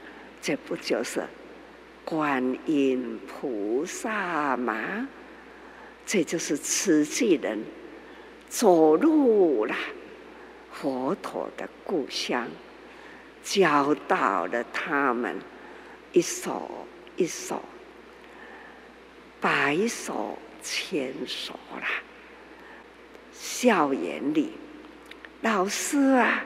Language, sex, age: Chinese, female, 50-69